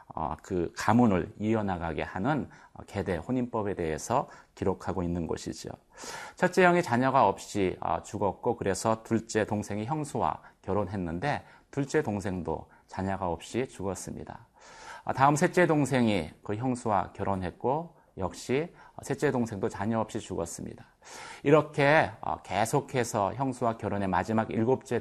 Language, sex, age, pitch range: Korean, male, 30-49, 95-130 Hz